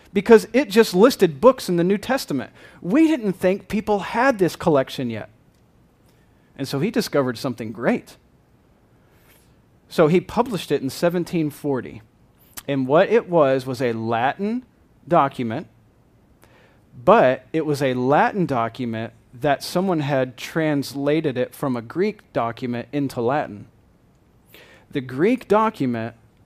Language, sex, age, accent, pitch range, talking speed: English, male, 40-59, American, 115-160 Hz, 130 wpm